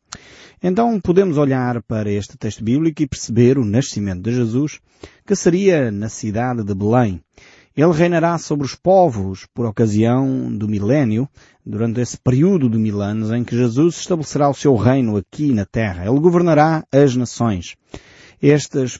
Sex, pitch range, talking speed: male, 110-160 Hz, 155 wpm